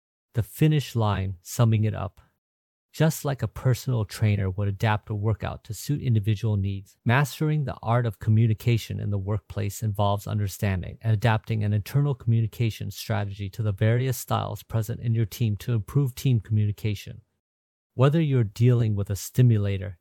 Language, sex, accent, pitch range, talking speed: English, male, American, 100-120 Hz, 160 wpm